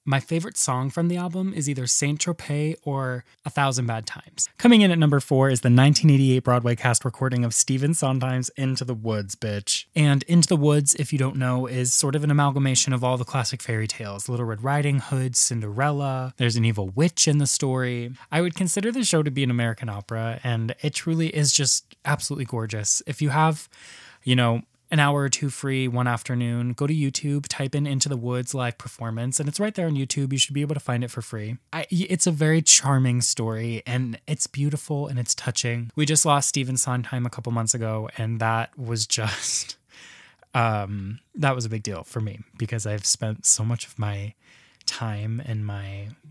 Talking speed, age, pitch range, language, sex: 205 wpm, 20-39, 115-145 Hz, English, male